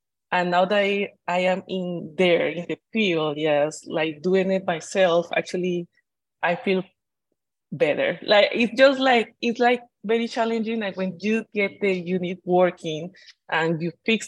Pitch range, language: 170-200 Hz, English